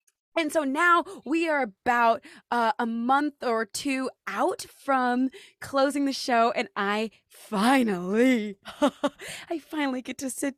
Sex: female